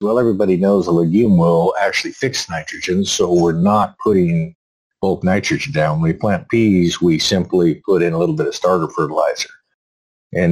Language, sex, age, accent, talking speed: English, male, 50-69, American, 175 wpm